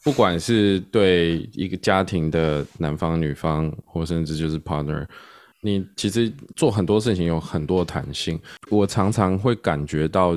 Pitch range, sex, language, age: 80-105 Hz, male, Chinese, 20-39